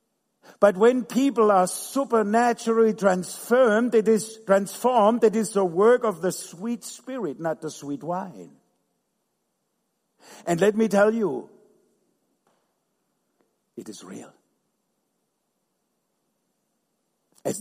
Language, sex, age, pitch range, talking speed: English, male, 60-79, 155-215 Hz, 100 wpm